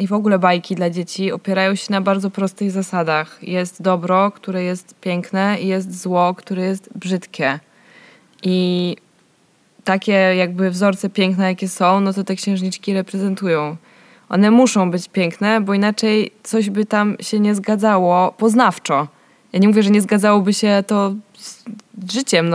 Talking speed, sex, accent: 155 wpm, female, native